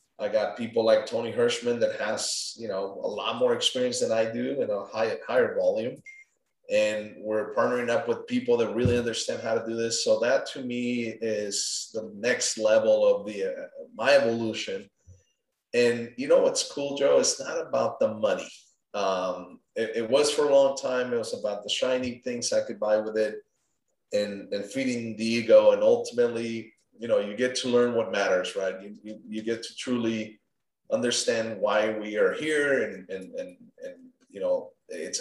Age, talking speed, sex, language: 30-49, 190 wpm, male, English